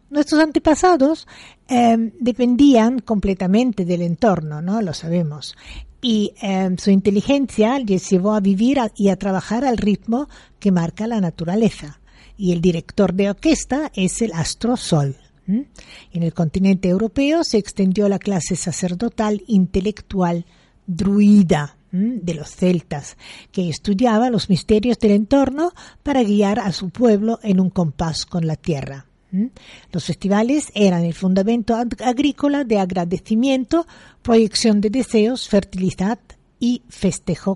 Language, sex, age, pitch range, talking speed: Spanish, female, 50-69, 185-240 Hz, 135 wpm